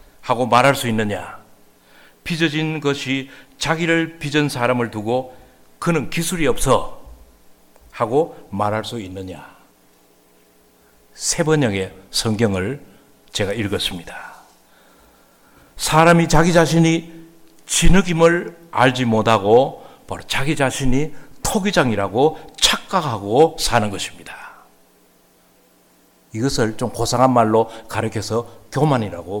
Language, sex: Korean, male